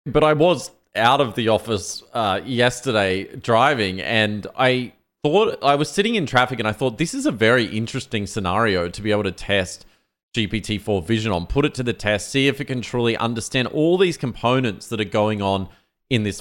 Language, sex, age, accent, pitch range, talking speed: English, male, 30-49, Australian, 100-125 Hz, 200 wpm